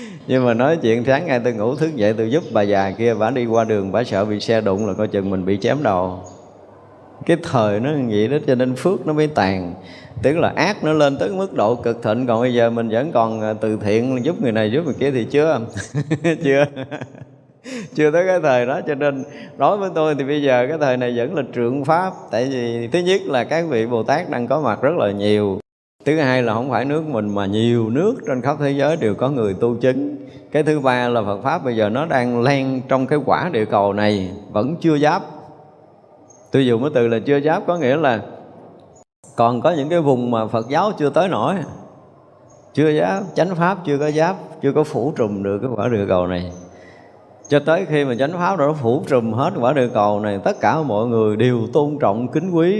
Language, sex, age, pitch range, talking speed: Vietnamese, male, 20-39, 110-150 Hz, 235 wpm